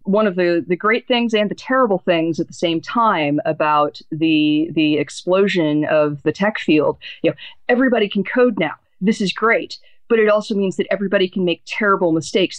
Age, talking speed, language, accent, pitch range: 40-59, 195 wpm, English, American, 155-210 Hz